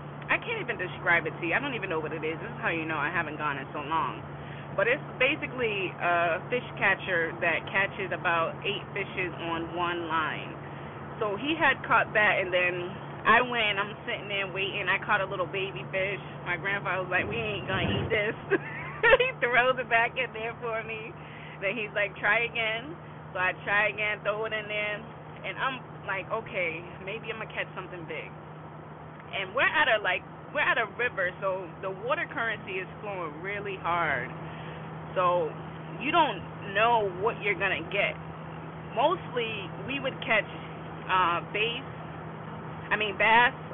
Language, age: English, 20-39